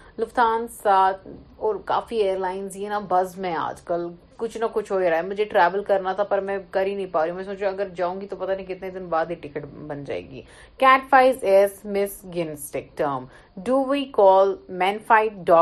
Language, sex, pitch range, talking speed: Urdu, female, 175-230 Hz, 180 wpm